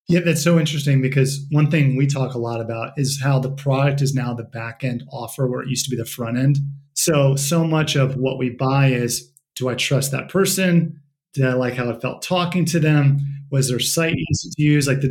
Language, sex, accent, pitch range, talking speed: English, male, American, 130-150 Hz, 230 wpm